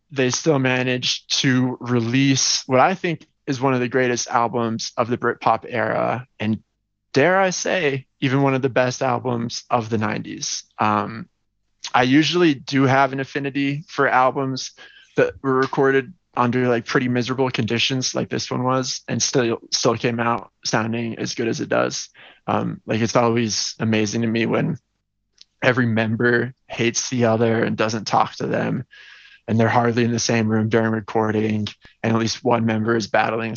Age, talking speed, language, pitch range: 20-39, 175 wpm, English, 110-130 Hz